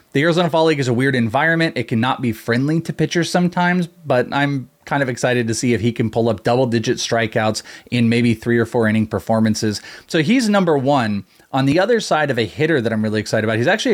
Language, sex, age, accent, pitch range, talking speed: English, male, 30-49, American, 120-155 Hz, 230 wpm